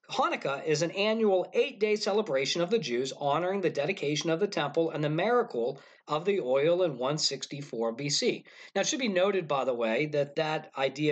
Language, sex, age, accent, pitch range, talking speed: English, male, 40-59, American, 140-210 Hz, 190 wpm